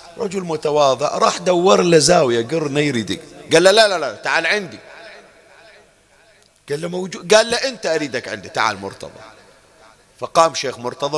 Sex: male